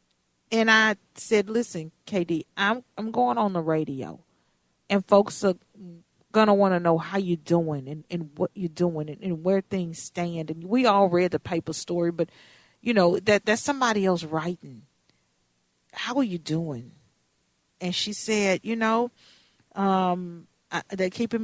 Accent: American